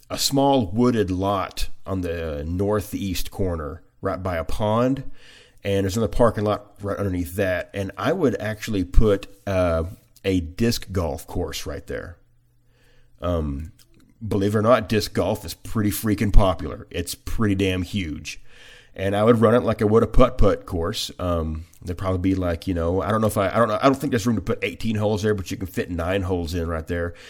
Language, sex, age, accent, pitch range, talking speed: English, male, 30-49, American, 90-110 Hz, 205 wpm